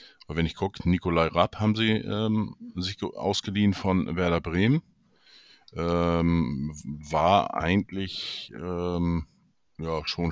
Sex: male